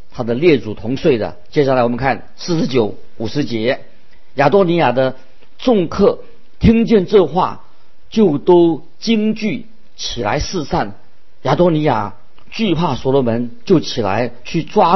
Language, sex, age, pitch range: Chinese, male, 50-69, 120-165 Hz